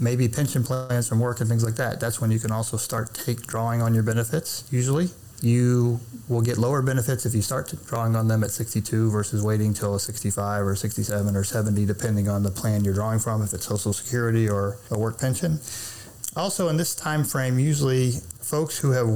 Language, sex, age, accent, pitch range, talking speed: English, male, 30-49, American, 105-120 Hz, 215 wpm